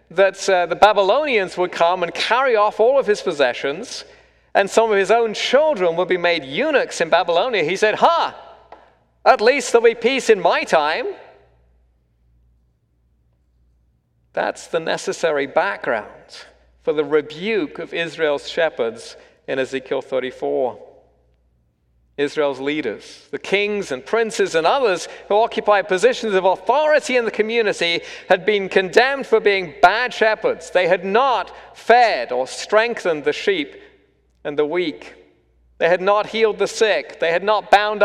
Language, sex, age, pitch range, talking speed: English, male, 50-69, 135-225 Hz, 145 wpm